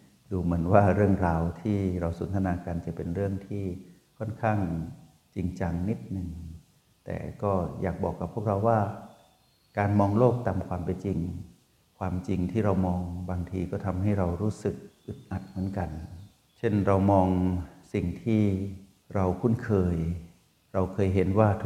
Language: Thai